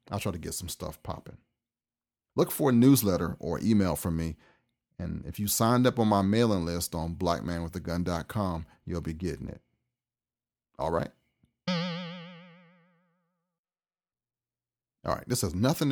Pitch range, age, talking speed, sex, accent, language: 80-105 Hz, 40-59, 140 wpm, male, American, English